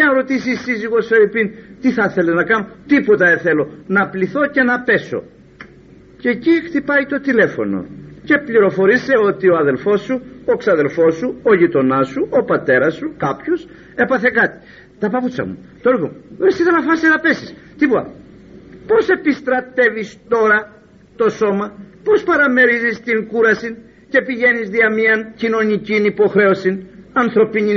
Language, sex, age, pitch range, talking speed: Greek, male, 50-69, 200-295 Hz, 145 wpm